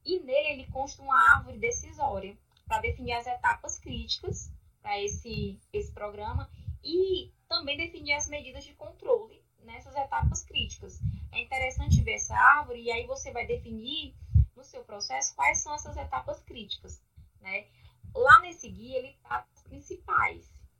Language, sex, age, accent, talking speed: Portuguese, female, 10-29, Brazilian, 150 wpm